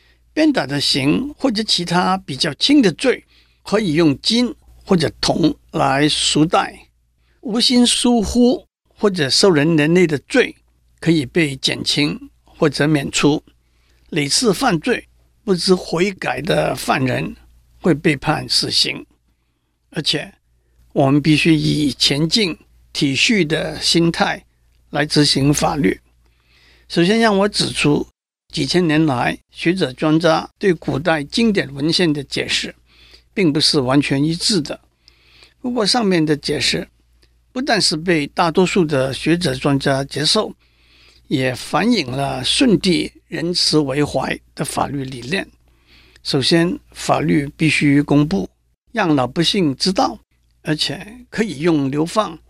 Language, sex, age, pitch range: Chinese, male, 60-79, 125-175 Hz